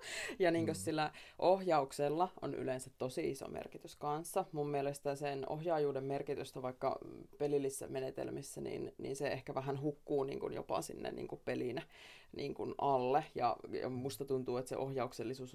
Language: Finnish